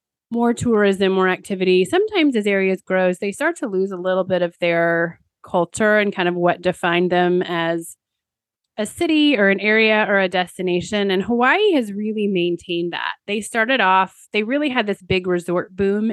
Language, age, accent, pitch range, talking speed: English, 30-49, American, 180-210 Hz, 180 wpm